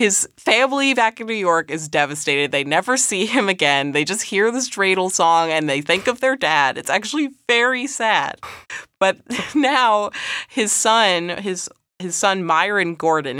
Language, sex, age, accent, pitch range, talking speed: English, female, 20-39, American, 145-225 Hz, 170 wpm